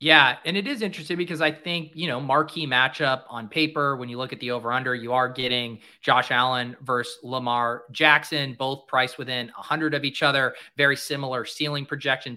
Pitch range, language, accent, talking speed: 130-160 Hz, English, American, 190 wpm